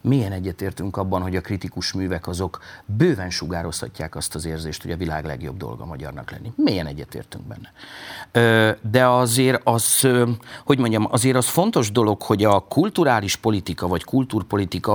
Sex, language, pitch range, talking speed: male, Hungarian, 100-135 Hz, 155 wpm